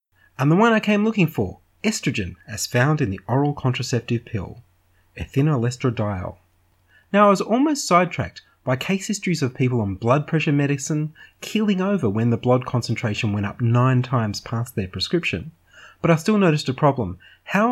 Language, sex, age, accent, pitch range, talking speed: English, male, 30-49, Australian, 105-155 Hz, 170 wpm